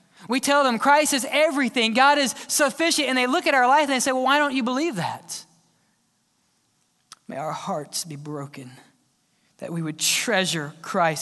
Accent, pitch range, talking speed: American, 185-275 Hz, 180 wpm